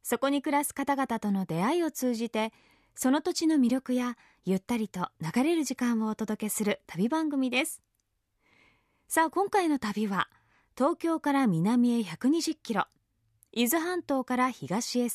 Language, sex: Japanese, female